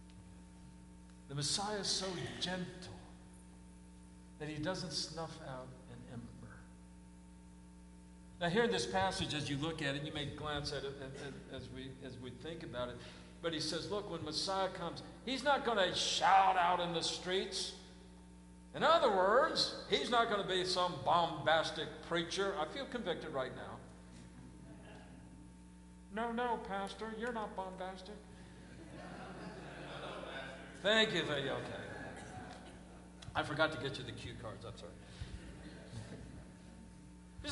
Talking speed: 140 wpm